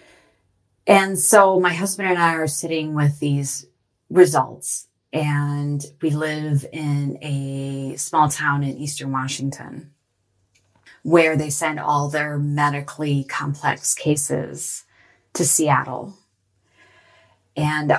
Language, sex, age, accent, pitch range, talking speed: English, female, 30-49, American, 135-155 Hz, 105 wpm